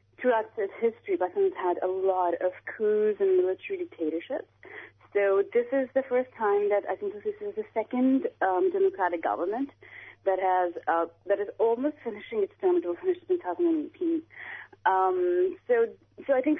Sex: female